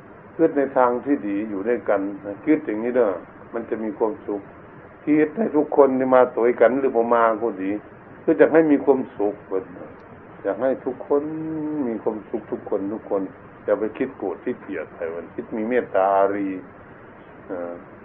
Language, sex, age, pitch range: Thai, male, 60-79, 100-140 Hz